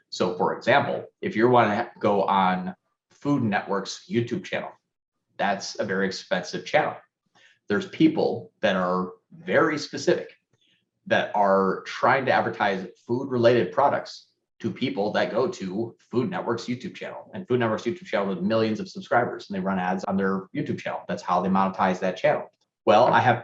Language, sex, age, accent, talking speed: English, male, 30-49, American, 170 wpm